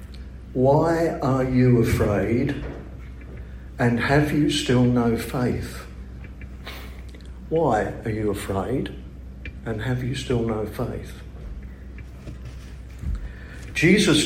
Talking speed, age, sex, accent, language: 90 wpm, 60-79, male, British, English